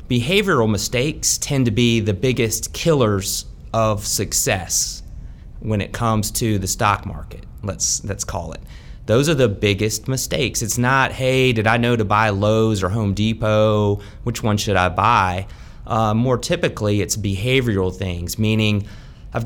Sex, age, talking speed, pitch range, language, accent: male, 30-49, 155 wpm, 100-120 Hz, English, American